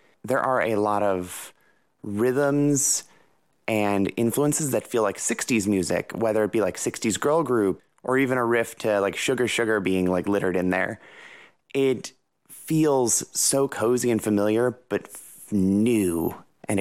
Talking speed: 150 wpm